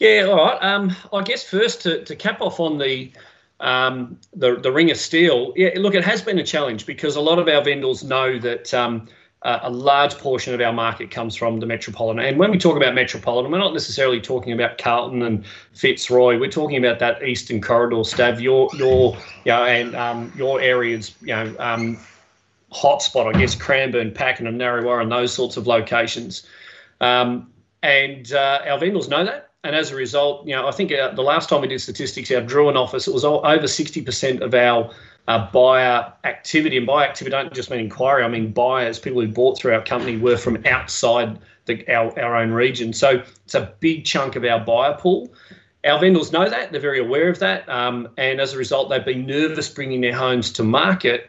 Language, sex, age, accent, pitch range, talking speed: English, male, 30-49, Australian, 120-145 Hz, 210 wpm